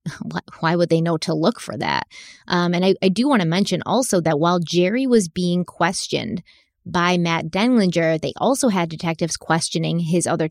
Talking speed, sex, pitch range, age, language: 190 wpm, female, 165-205 Hz, 20-39, English